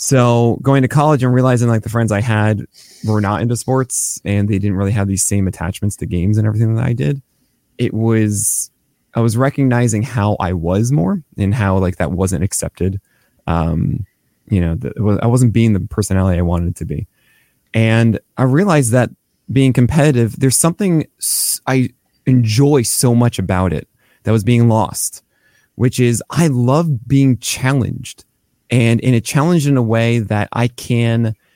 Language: English